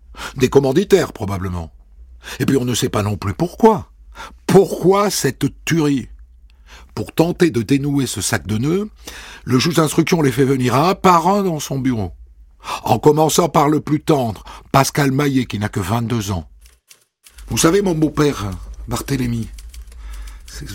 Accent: French